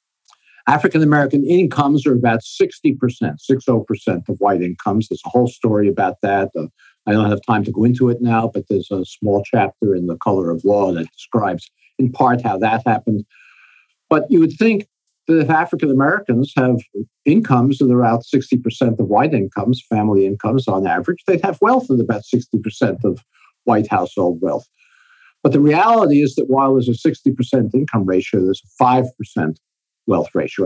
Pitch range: 110-155 Hz